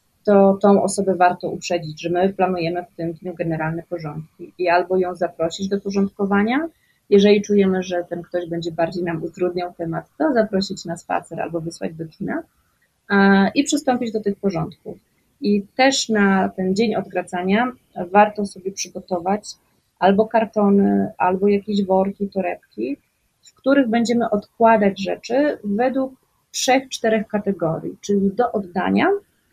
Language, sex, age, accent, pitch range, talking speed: Polish, female, 30-49, native, 180-220 Hz, 140 wpm